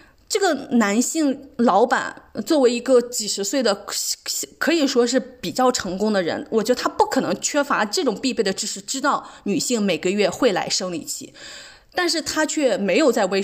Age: 20-39